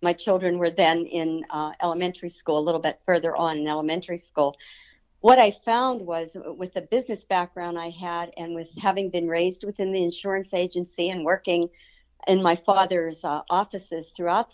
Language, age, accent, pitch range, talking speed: English, 50-69, American, 170-205 Hz, 180 wpm